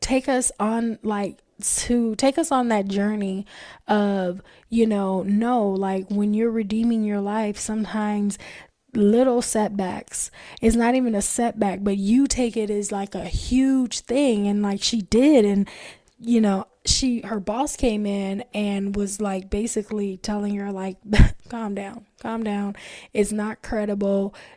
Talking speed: 155 wpm